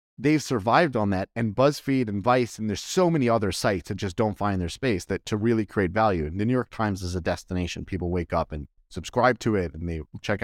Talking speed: 245 wpm